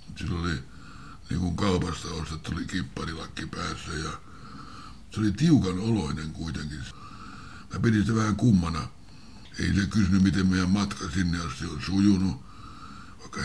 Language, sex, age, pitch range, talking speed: Finnish, male, 60-79, 85-100 Hz, 130 wpm